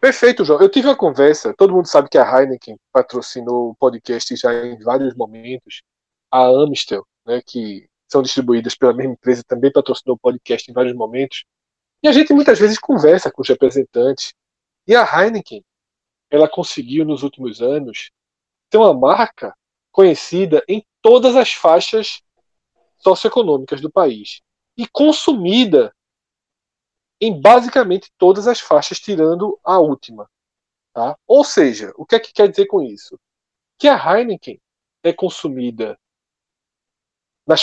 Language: Portuguese